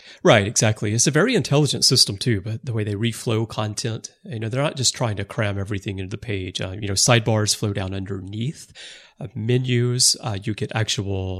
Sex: male